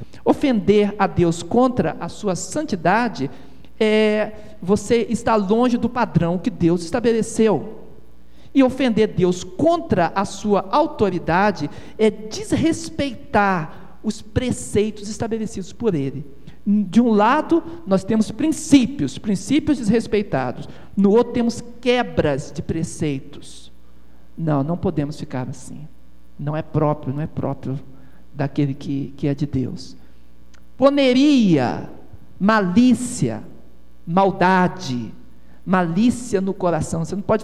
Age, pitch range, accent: 50-69, 145-225 Hz, Brazilian